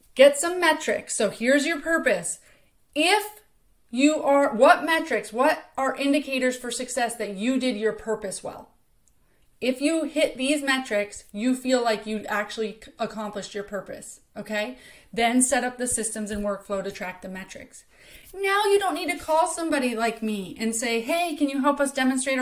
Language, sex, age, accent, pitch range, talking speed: English, female, 30-49, American, 225-295 Hz, 175 wpm